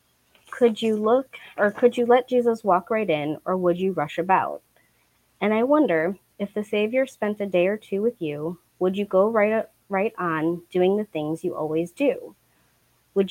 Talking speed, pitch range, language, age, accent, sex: 190 wpm, 170-220 Hz, English, 20-39, American, female